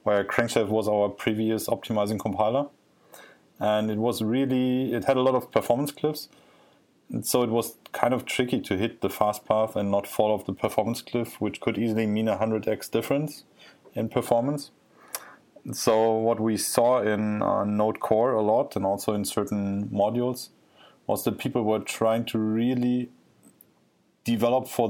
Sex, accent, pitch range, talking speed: male, German, 100-115 Hz, 165 wpm